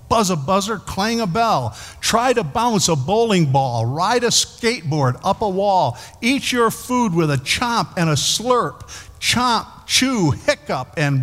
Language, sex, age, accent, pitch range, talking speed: English, male, 50-69, American, 115-175 Hz, 165 wpm